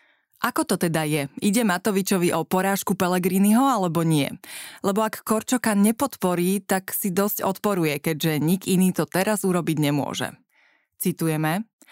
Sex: female